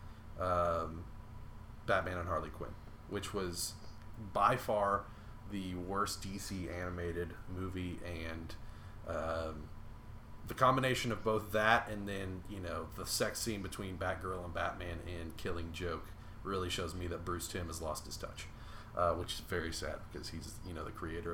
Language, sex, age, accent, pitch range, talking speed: English, male, 30-49, American, 90-110 Hz, 155 wpm